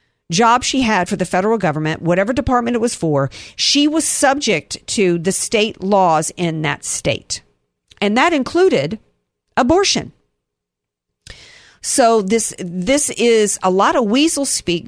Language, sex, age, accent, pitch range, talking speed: English, female, 50-69, American, 160-225 Hz, 140 wpm